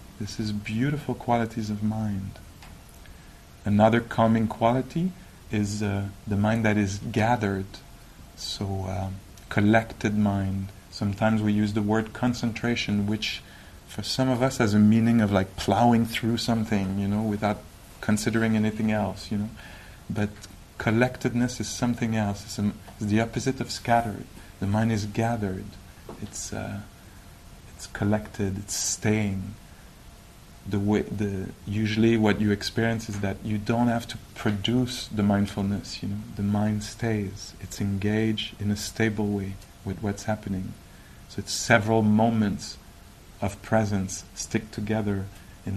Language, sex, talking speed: English, male, 140 wpm